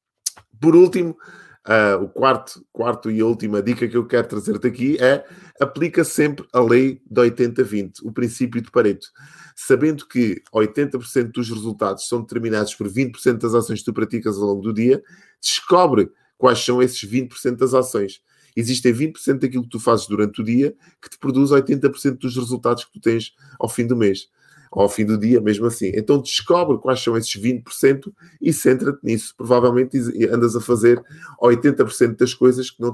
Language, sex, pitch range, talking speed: Portuguese, male, 115-135 Hz, 175 wpm